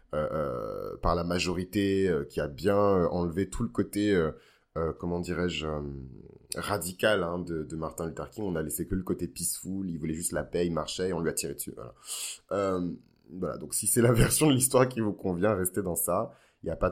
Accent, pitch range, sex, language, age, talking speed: French, 85-100 Hz, male, French, 30-49, 235 wpm